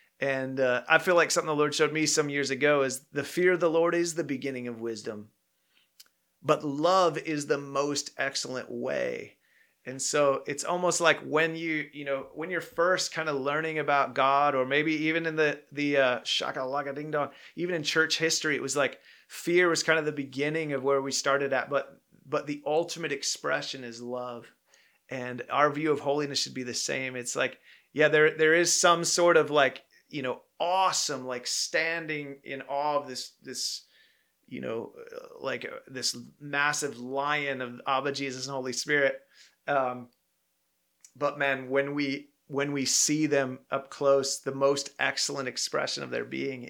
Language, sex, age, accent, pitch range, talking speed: English, male, 30-49, American, 130-155 Hz, 185 wpm